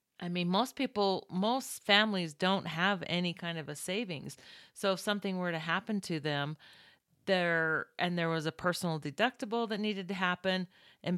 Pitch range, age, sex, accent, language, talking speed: 160-190 Hz, 40-59, female, American, English, 175 wpm